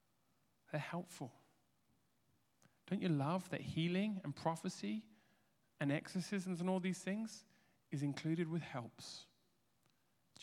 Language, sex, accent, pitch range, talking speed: English, male, British, 130-185 Hz, 115 wpm